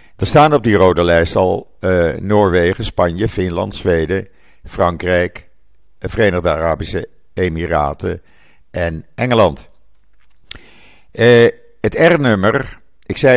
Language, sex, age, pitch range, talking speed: Dutch, male, 50-69, 85-110 Hz, 105 wpm